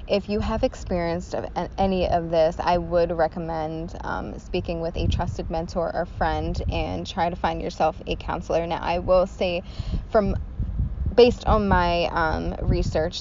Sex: female